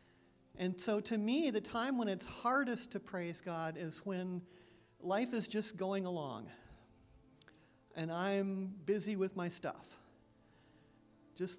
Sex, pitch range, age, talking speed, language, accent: male, 160-215 Hz, 50-69, 135 wpm, English, American